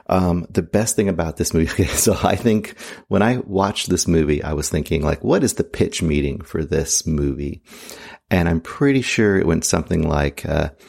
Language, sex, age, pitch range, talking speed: English, male, 30-49, 80-105 Hz, 200 wpm